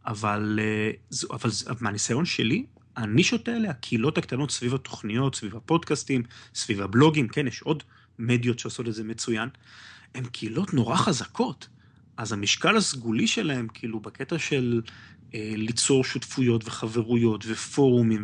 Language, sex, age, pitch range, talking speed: Hebrew, male, 30-49, 110-150 Hz, 130 wpm